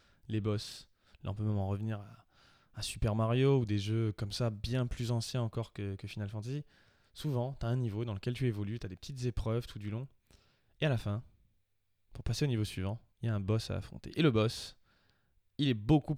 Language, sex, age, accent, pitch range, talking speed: French, male, 20-39, French, 105-125 Hz, 235 wpm